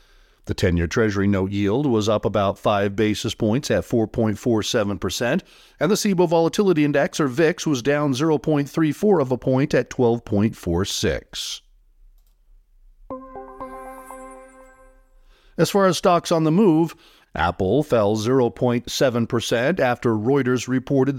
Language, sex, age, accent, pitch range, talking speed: English, male, 50-69, American, 110-155 Hz, 115 wpm